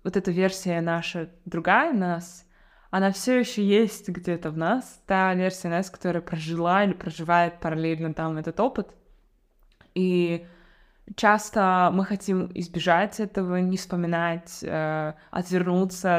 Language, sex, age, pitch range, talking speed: Russian, female, 20-39, 170-190 Hz, 125 wpm